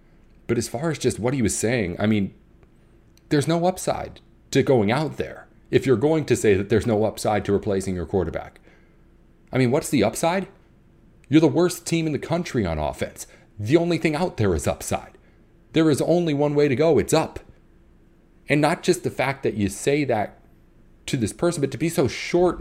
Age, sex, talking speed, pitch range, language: 40-59, male, 205 wpm, 105-155 Hz, English